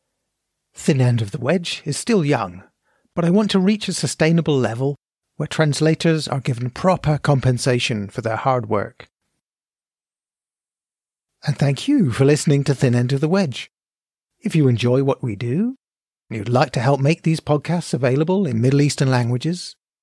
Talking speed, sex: 170 wpm, male